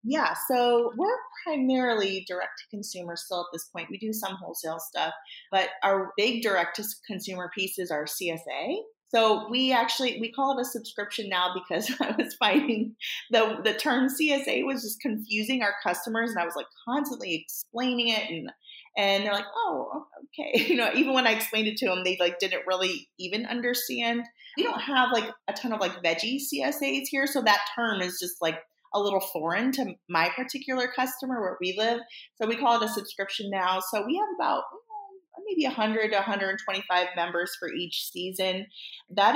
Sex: female